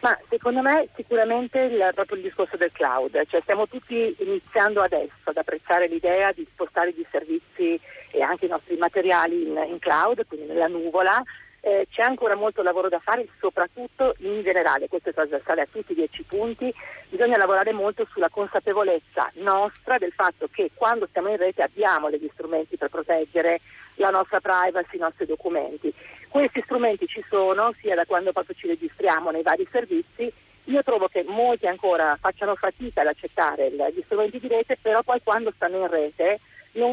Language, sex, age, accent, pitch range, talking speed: Italian, female, 50-69, native, 175-245 Hz, 175 wpm